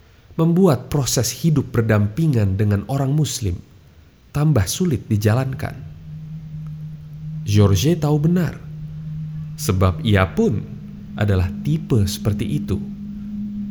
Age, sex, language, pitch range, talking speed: 30-49, male, Indonesian, 105-155 Hz, 90 wpm